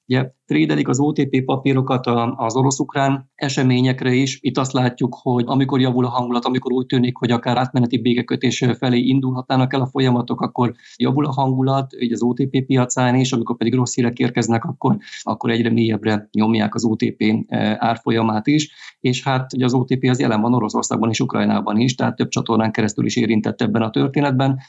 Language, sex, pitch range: Hungarian, male, 115-130 Hz